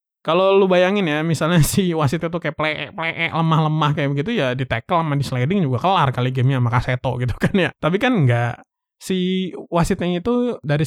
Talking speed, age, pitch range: 195 wpm, 20-39, 125-165 Hz